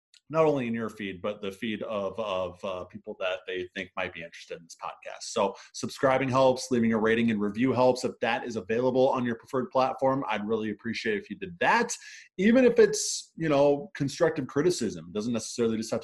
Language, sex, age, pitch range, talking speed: English, male, 20-39, 115-150 Hz, 215 wpm